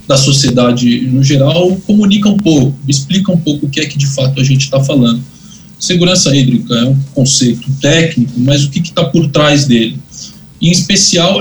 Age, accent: 20-39, Brazilian